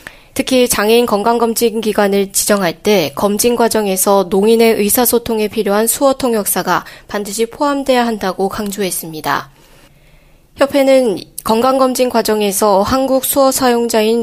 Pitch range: 200-235 Hz